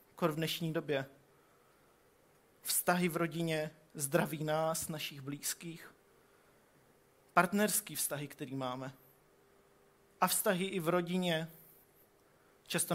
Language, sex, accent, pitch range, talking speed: Czech, male, native, 140-170 Hz, 95 wpm